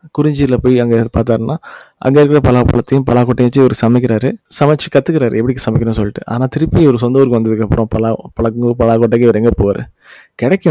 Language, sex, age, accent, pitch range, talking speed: Tamil, male, 20-39, native, 105-125 Hz, 175 wpm